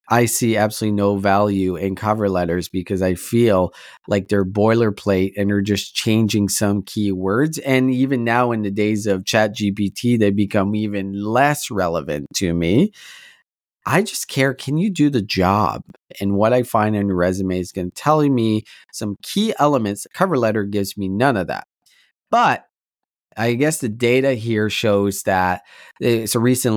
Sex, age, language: male, 30-49, English